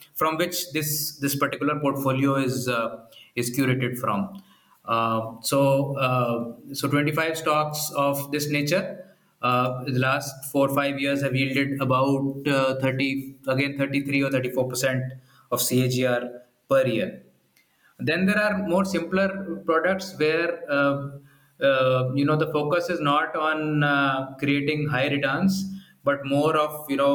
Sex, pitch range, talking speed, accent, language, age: male, 130-150 Hz, 145 wpm, Indian, English, 20-39